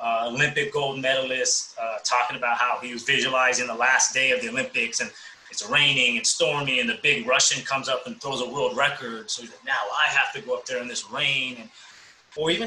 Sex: male